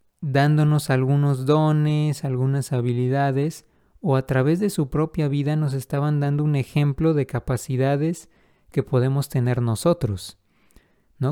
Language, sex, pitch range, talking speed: Spanish, male, 125-155 Hz, 125 wpm